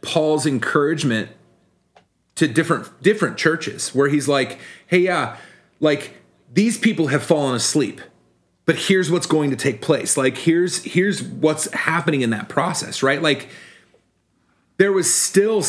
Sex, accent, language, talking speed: male, American, English, 140 wpm